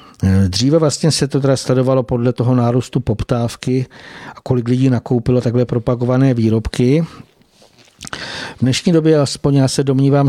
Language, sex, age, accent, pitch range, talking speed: Czech, male, 50-69, native, 120-135 Hz, 140 wpm